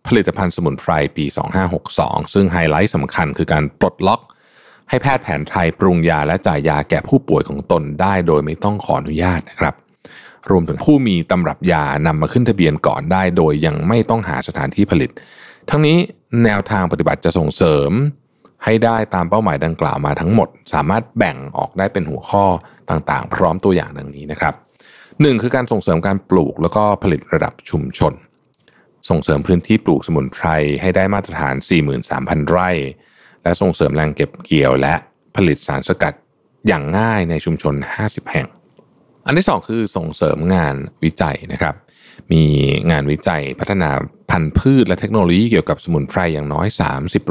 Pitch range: 80-105 Hz